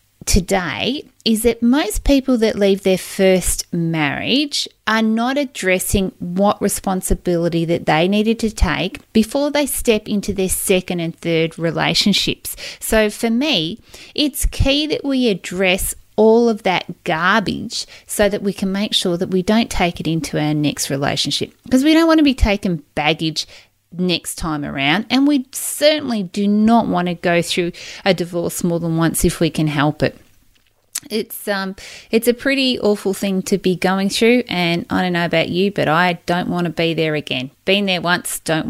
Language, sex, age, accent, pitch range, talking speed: English, female, 30-49, Australian, 170-225 Hz, 180 wpm